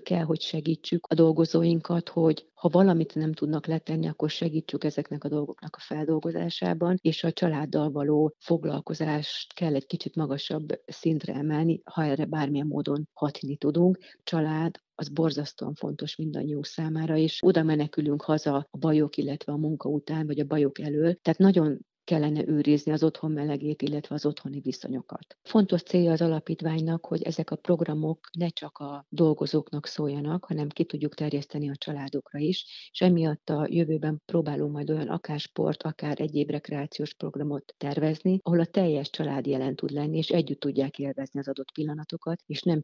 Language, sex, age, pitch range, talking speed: Hungarian, female, 40-59, 145-160 Hz, 160 wpm